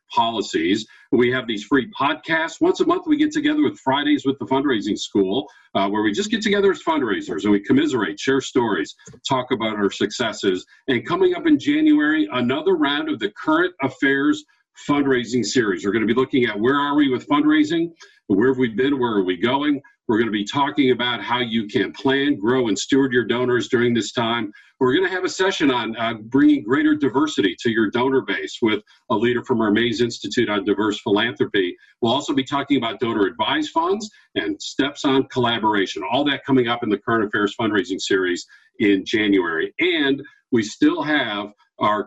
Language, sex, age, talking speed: English, male, 50-69, 195 wpm